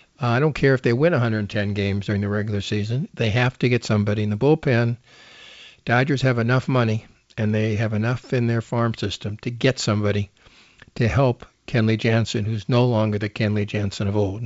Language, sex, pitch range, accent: English, male, 110-130 Hz, American